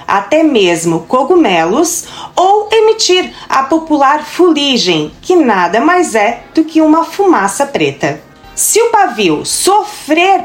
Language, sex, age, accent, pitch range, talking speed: Portuguese, female, 40-59, Brazilian, 220-350 Hz, 120 wpm